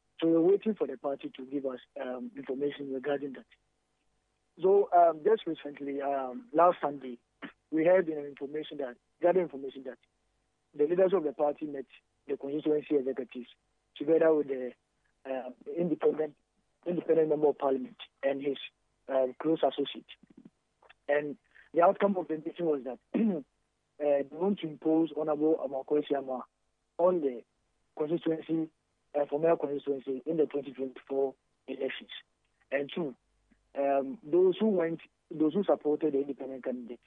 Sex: male